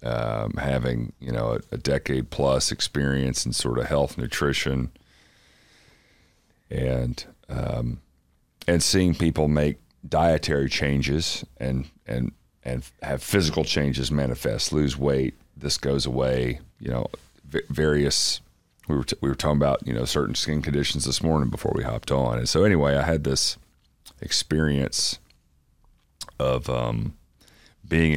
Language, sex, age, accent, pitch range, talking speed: English, male, 40-59, American, 65-75 Hz, 135 wpm